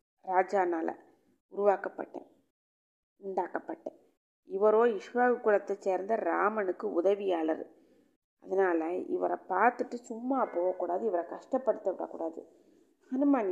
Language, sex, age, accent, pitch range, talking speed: Tamil, female, 30-49, native, 190-240 Hz, 80 wpm